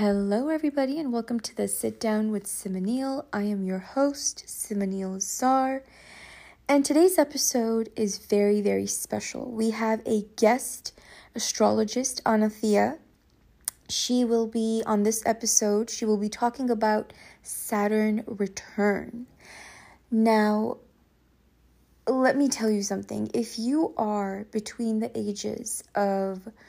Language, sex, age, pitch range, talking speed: English, female, 20-39, 195-235 Hz, 125 wpm